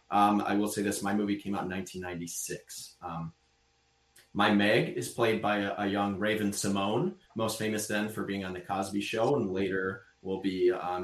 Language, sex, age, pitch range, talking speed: English, male, 30-49, 95-110 Hz, 195 wpm